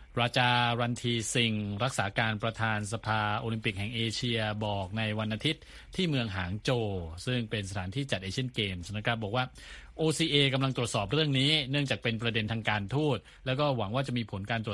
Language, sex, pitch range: Thai, male, 100-125 Hz